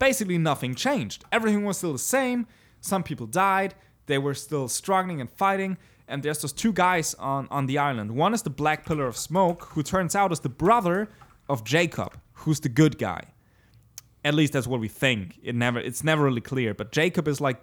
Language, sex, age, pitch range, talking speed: English, male, 20-39, 120-155 Hz, 210 wpm